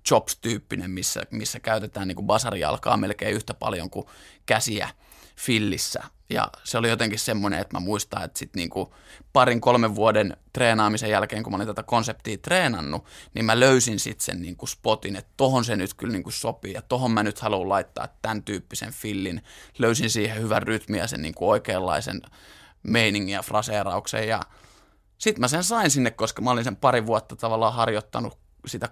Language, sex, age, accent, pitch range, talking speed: Finnish, male, 20-39, native, 105-125 Hz, 185 wpm